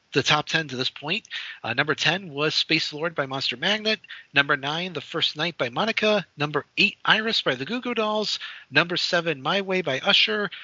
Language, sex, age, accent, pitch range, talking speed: English, male, 40-59, American, 135-180 Hz, 205 wpm